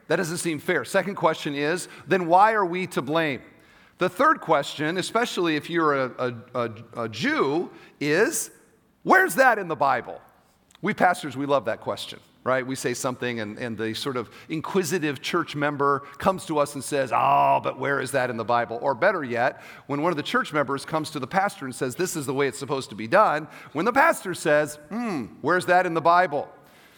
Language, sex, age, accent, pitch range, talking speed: English, male, 40-59, American, 140-190 Hz, 205 wpm